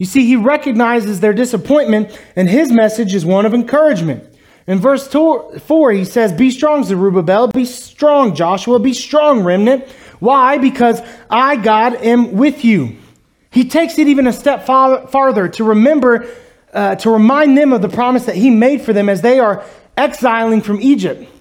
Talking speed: 170 wpm